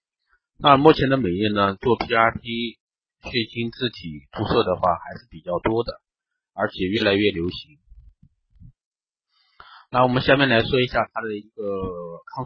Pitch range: 105-145 Hz